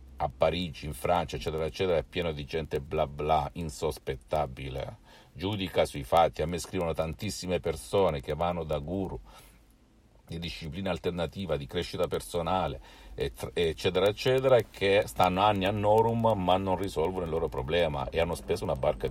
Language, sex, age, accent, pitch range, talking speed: Italian, male, 50-69, native, 90-120 Hz, 155 wpm